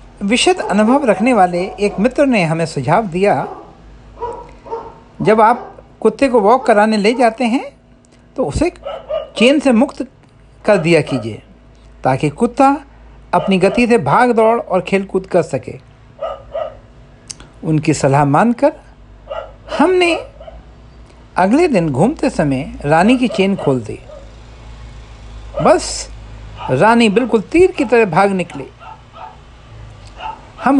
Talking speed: 120 wpm